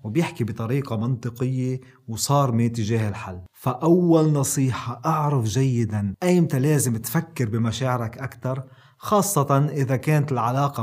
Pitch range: 115-140 Hz